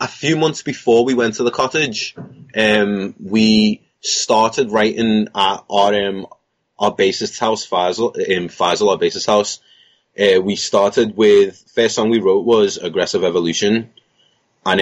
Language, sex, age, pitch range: English, male, 20-39, 90-120 Hz